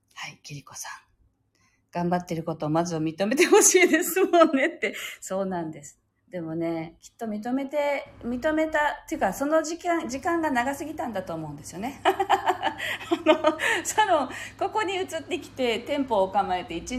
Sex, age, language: female, 40-59, Japanese